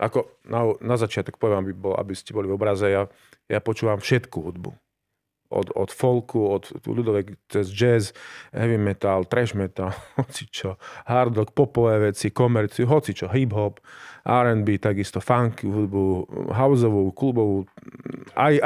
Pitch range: 105-130 Hz